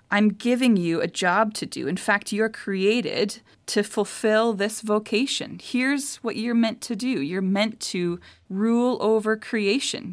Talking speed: 160 wpm